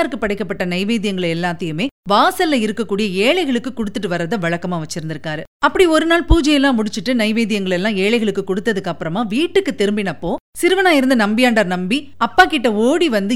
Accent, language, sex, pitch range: native, Tamil, female, 200-290 Hz